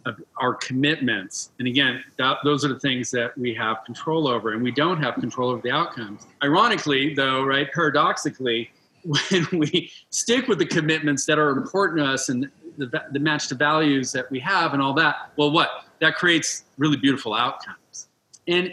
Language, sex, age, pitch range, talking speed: English, male, 40-59, 135-165 Hz, 185 wpm